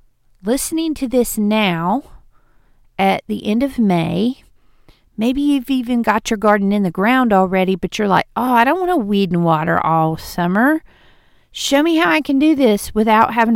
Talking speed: 180 wpm